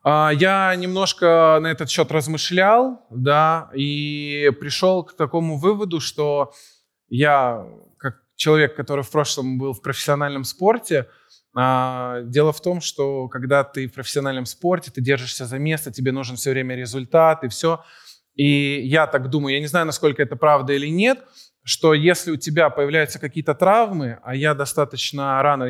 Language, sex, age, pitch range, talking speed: Russian, male, 20-39, 135-170 Hz, 155 wpm